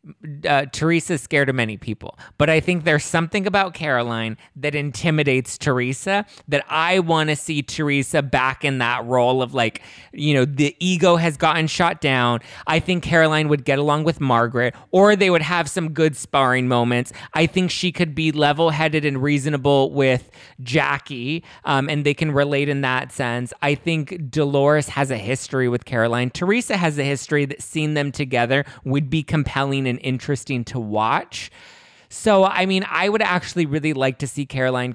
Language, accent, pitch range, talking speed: English, American, 125-160 Hz, 180 wpm